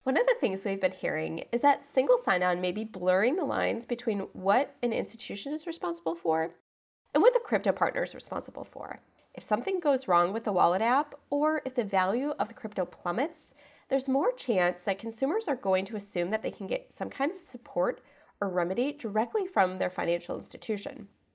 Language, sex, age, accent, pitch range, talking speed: English, female, 20-39, American, 195-275 Hz, 200 wpm